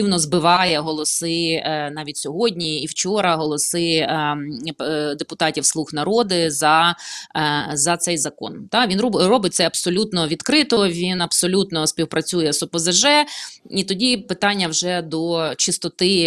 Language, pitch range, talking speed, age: Ukrainian, 160-195 Hz, 110 wpm, 20-39